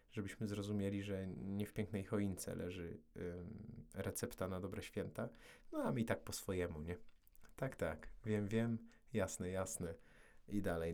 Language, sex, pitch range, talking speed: Polish, male, 85-110 Hz, 150 wpm